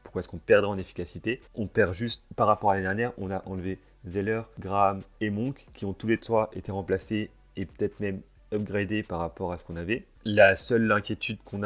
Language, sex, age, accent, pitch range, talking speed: French, male, 30-49, French, 90-105 Hz, 215 wpm